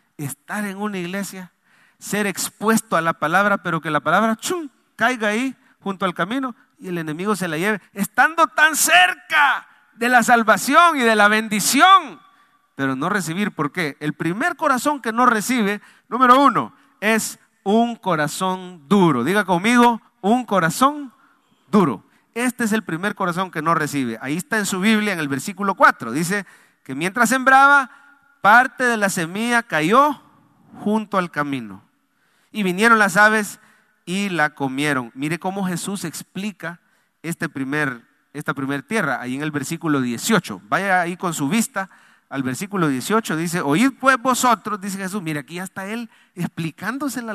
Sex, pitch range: male, 170-245 Hz